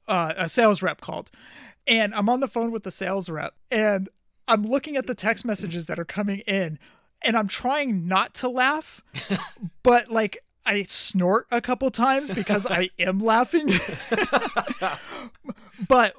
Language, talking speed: English, 160 wpm